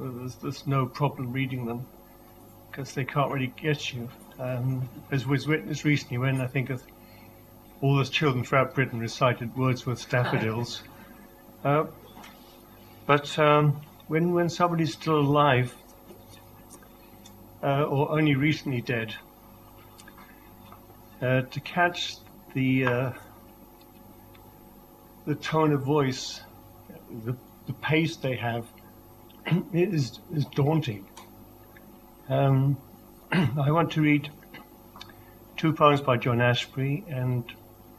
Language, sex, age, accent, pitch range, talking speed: English, male, 50-69, British, 115-145 Hz, 110 wpm